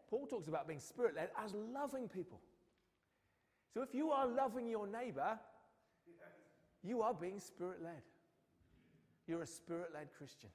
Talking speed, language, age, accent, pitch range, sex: 150 wpm, English, 40-59, British, 135-210 Hz, male